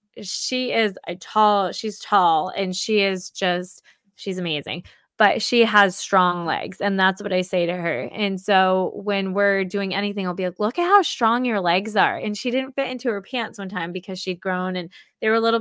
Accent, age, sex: American, 20-39, female